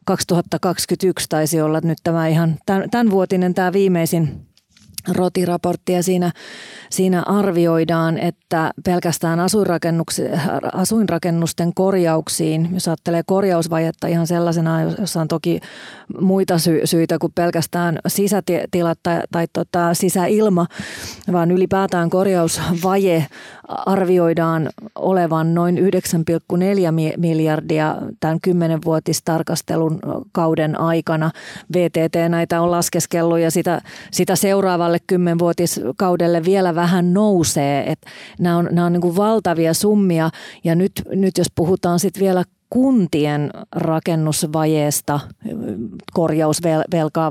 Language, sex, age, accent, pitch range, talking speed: Finnish, female, 30-49, native, 165-185 Hz, 100 wpm